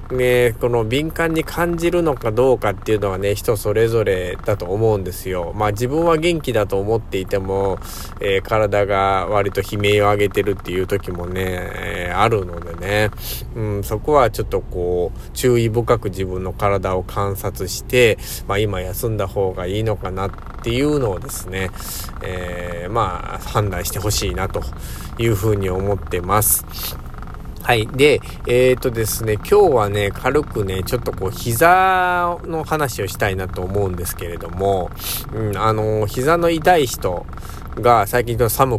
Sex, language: male, Japanese